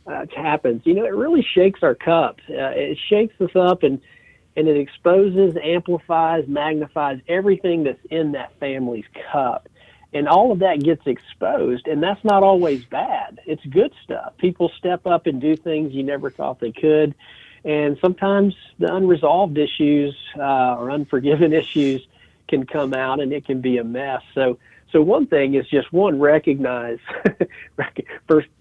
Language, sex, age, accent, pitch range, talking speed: English, male, 50-69, American, 130-165 Hz, 165 wpm